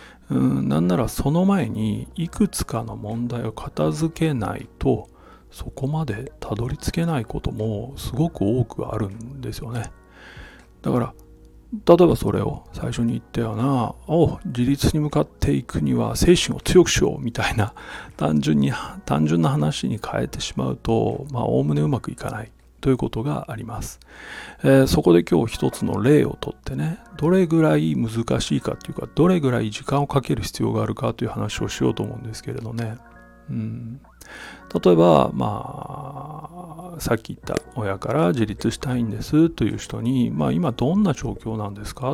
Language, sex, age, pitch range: Japanese, male, 40-59, 105-145 Hz